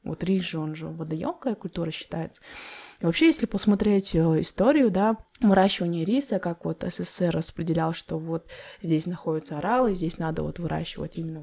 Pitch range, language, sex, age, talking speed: 165-210 Hz, Russian, female, 20-39, 160 wpm